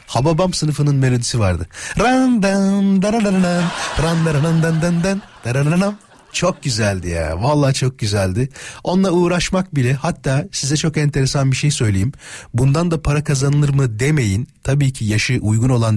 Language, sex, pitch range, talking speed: Turkish, male, 105-165 Hz, 145 wpm